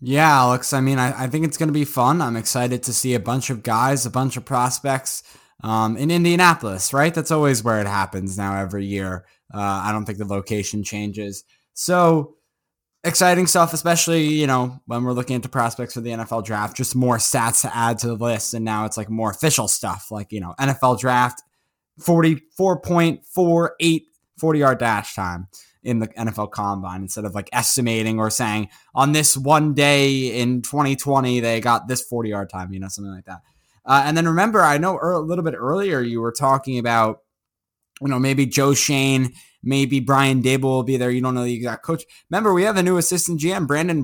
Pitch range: 110-150 Hz